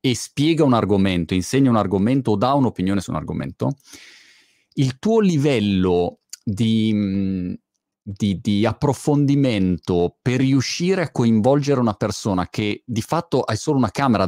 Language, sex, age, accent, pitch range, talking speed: Italian, male, 30-49, native, 105-145 Hz, 140 wpm